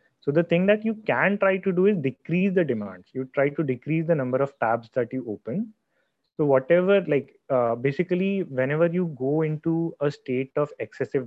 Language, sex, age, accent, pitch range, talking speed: English, male, 30-49, Indian, 130-170 Hz, 195 wpm